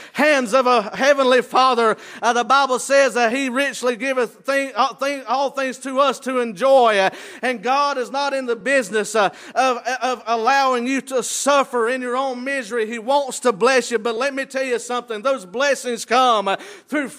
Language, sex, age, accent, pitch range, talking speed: English, male, 50-69, American, 235-275 Hz, 195 wpm